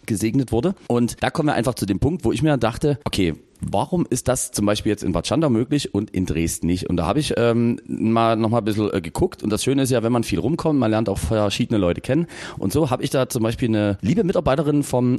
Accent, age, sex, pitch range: German, 40-59, male, 95-125 Hz